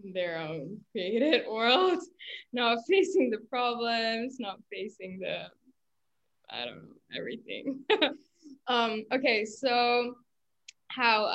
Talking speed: 100 wpm